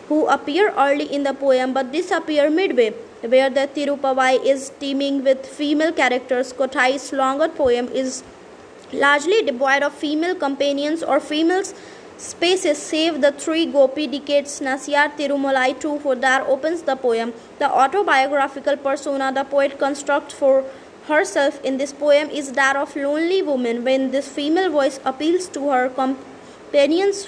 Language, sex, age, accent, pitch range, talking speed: English, female, 20-39, Indian, 265-305 Hz, 145 wpm